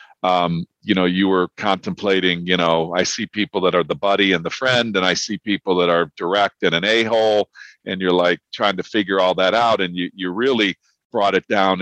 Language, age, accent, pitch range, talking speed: English, 50-69, American, 90-105 Hz, 225 wpm